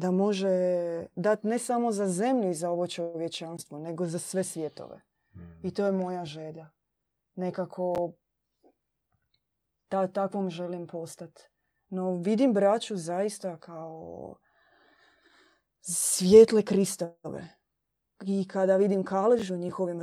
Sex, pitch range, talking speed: female, 170-195 Hz, 115 wpm